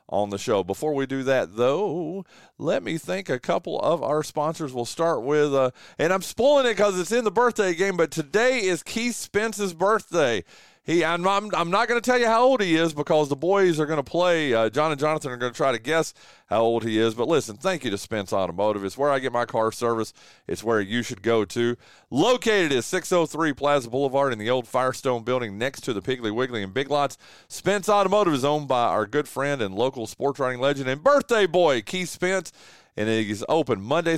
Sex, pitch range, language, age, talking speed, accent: male, 120-180 Hz, English, 40-59, 230 wpm, American